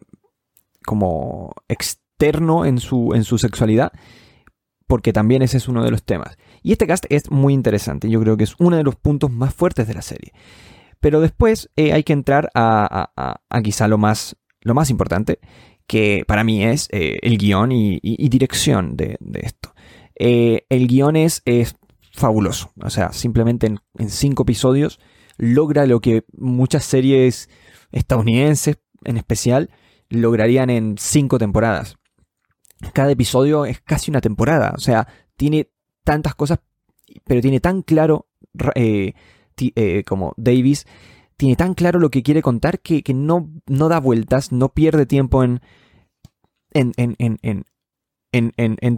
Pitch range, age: 115-145 Hz, 20-39